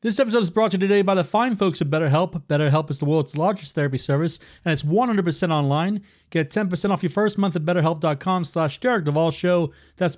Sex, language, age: male, English, 40-59